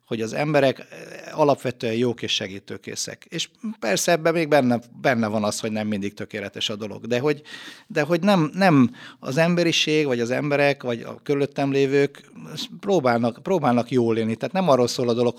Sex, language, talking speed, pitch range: male, Hungarian, 180 wpm, 115-145 Hz